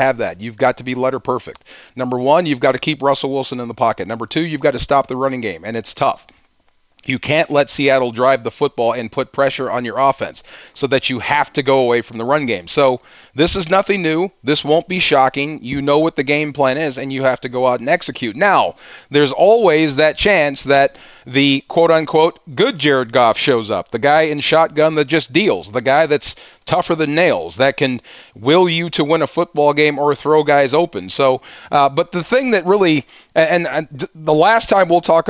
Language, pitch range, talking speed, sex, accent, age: English, 135-165 Hz, 225 wpm, male, American, 30-49